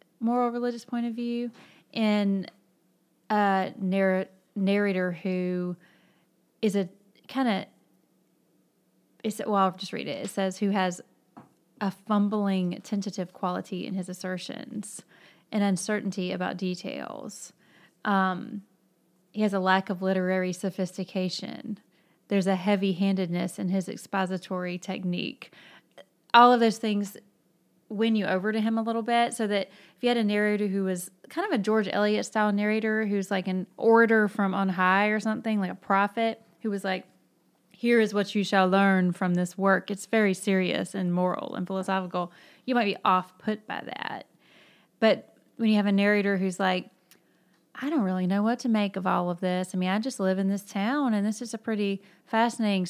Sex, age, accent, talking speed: female, 30-49, American, 170 wpm